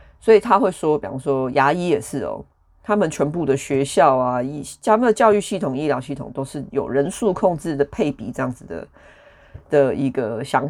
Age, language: 30-49, Chinese